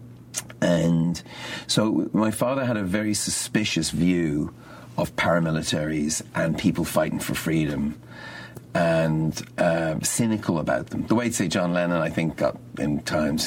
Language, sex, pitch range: English, male, 80-105 Hz